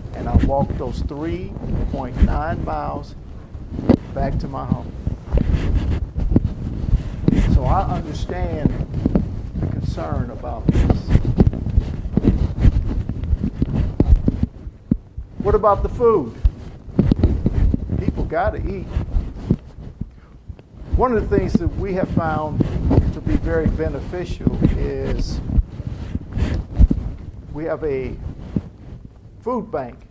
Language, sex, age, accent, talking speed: English, male, 50-69, American, 85 wpm